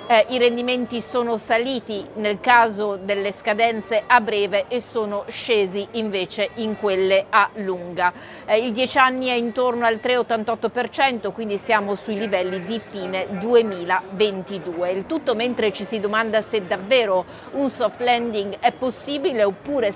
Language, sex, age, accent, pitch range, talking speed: Italian, female, 40-59, native, 200-240 Hz, 145 wpm